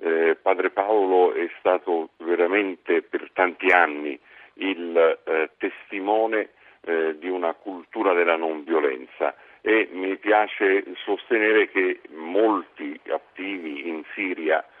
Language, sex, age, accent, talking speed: Italian, male, 50-69, native, 115 wpm